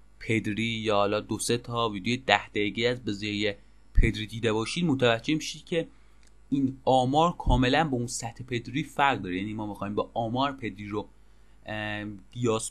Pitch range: 110-135 Hz